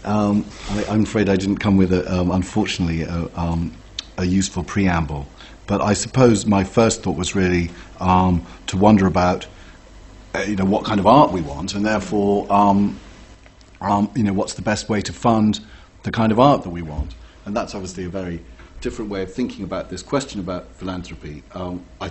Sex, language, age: male, English, 40-59